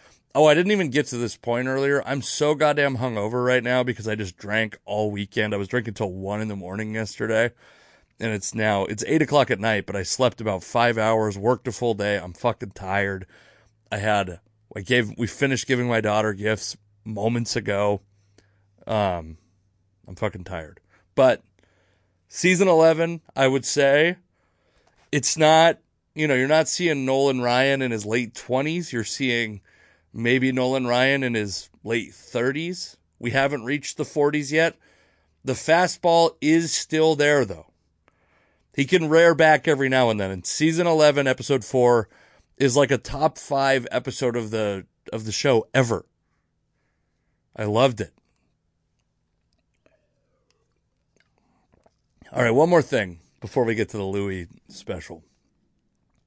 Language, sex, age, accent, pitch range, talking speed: English, male, 30-49, American, 105-140 Hz, 155 wpm